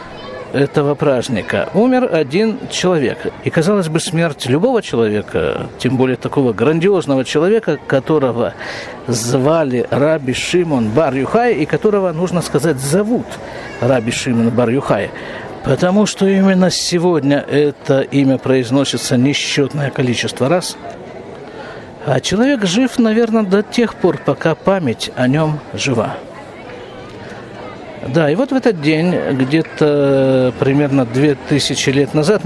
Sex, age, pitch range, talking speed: male, 50-69, 135-185 Hz, 120 wpm